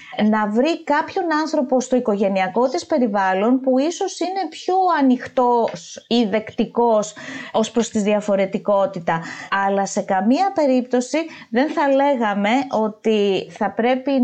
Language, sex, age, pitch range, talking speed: Greek, female, 20-39, 190-250 Hz, 120 wpm